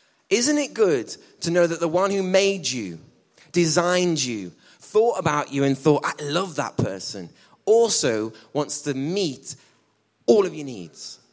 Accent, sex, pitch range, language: British, male, 135-180 Hz, English